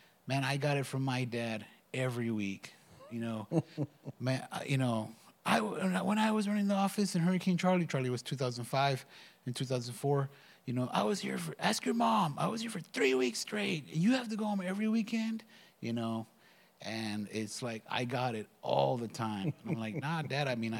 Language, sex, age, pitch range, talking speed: English, male, 30-49, 115-150 Hz, 200 wpm